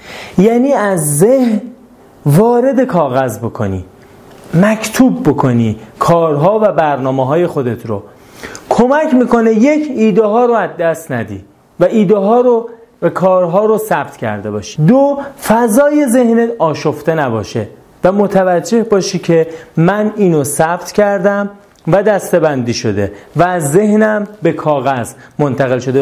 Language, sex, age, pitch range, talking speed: Persian, male, 30-49, 145-225 Hz, 125 wpm